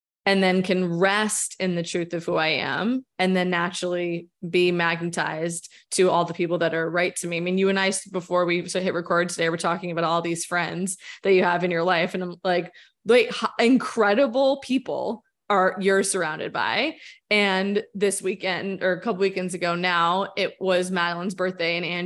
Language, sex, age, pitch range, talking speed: English, female, 20-39, 175-225 Hz, 195 wpm